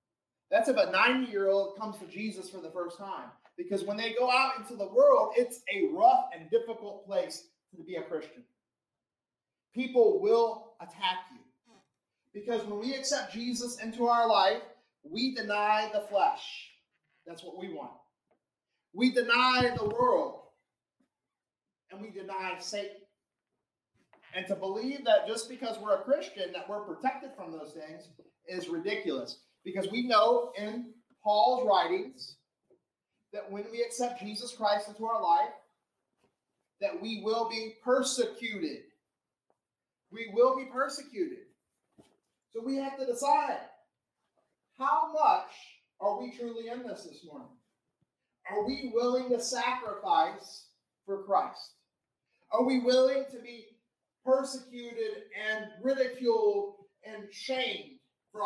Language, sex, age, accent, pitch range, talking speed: English, male, 30-49, American, 205-270 Hz, 135 wpm